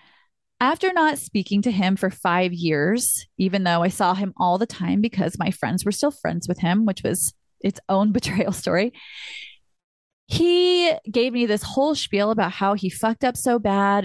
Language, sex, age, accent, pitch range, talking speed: English, female, 30-49, American, 185-225 Hz, 185 wpm